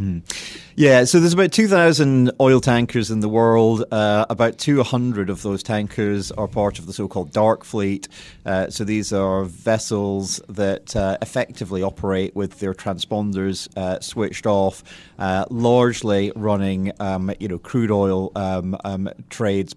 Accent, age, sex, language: British, 30-49, male, English